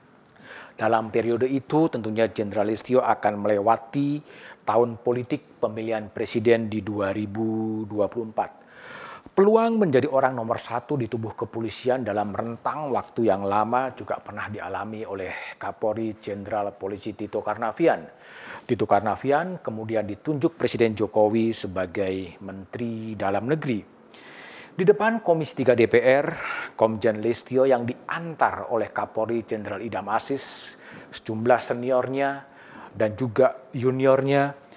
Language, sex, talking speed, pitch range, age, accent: Indonesian, male, 110 wpm, 110-135 Hz, 40-59, native